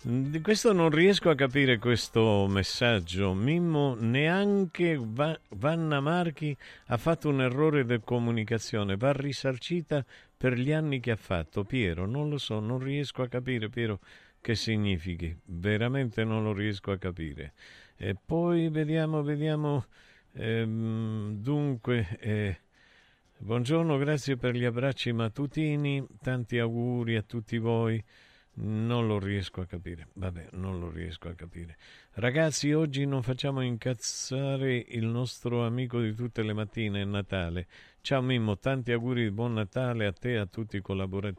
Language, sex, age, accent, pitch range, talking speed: Italian, male, 50-69, native, 100-135 Hz, 145 wpm